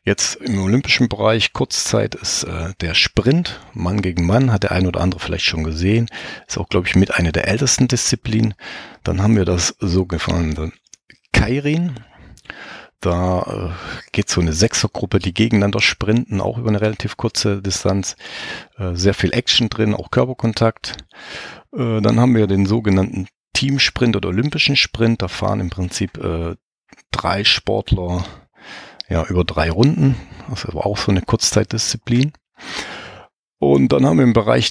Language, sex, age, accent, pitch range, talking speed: German, male, 40-59, German, 90-120 Hz, 155 wpm